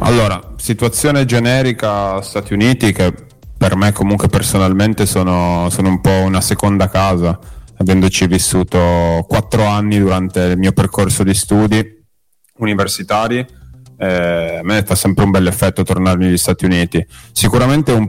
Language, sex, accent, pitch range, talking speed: Italian, male, native, 90-105 Hz, 145 wpm